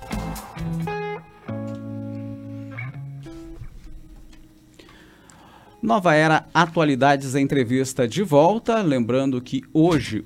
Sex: male